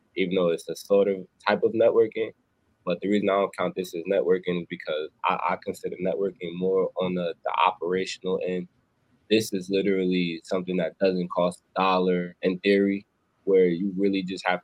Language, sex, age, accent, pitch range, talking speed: English, male, 20-39, American, 90-100 Hz, 190 wpm